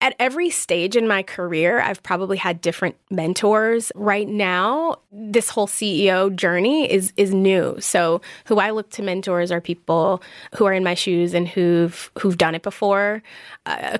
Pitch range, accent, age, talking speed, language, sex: 175-205 Hz, American, 20-39, 175 wpm, English, female